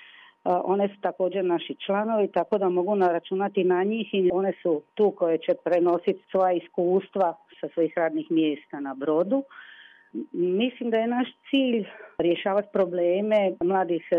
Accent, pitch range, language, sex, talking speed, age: native, 170-200 Hz, Croatian, female, 145 wpm, 40-59